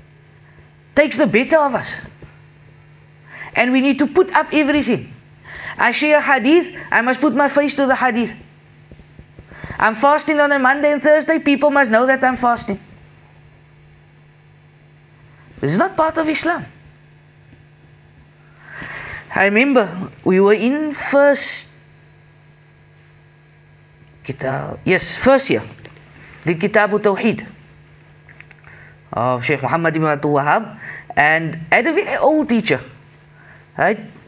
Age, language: 40-59, English